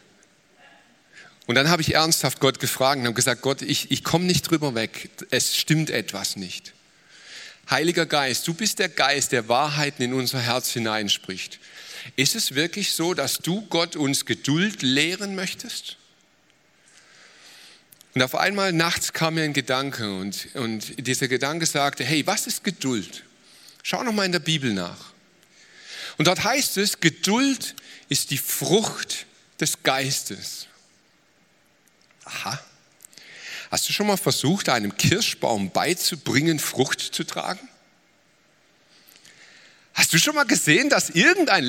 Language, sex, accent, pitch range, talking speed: German, male, German, 130-175 Hz, 140 wpm